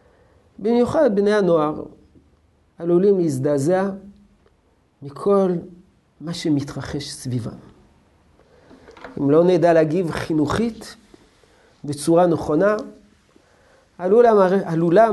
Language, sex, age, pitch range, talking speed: Hebrew, male, 50-69, 135-180 Hz, 65 wpm